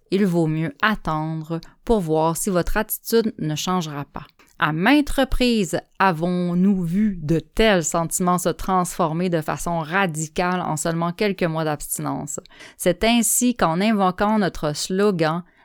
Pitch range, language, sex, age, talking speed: 165-210 Hz, French, female, 20-39, 140 wpm